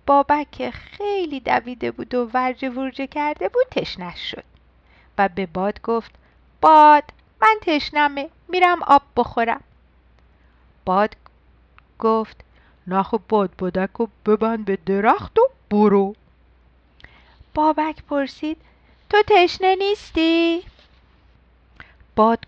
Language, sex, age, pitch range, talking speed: Persian, female, 50-69, 185-300 Hz, 100 wpm